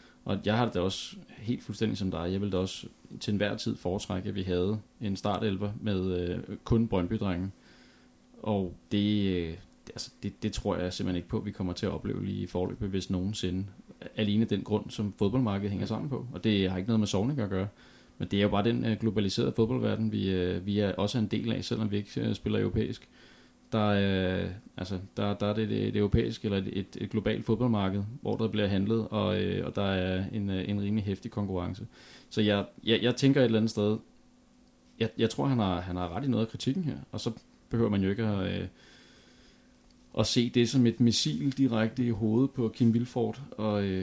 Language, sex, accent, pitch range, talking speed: Danish, male, native, 95-115 Hz, 215 wpm